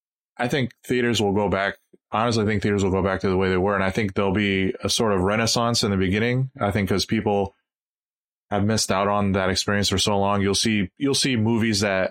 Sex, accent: male, American